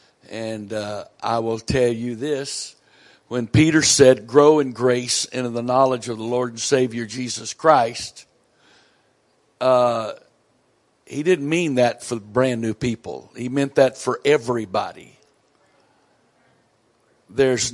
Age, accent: 60-79, American